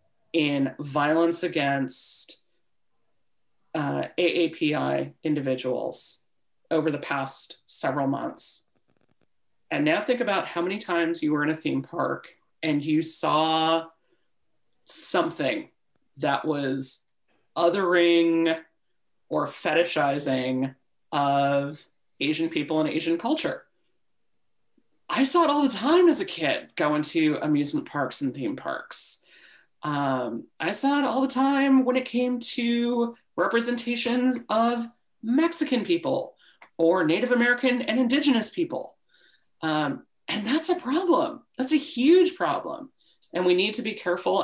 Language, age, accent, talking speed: English, 30-49, American, 125 wpm